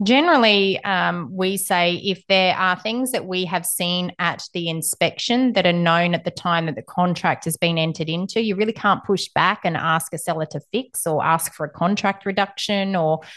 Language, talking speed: English, 205 wpm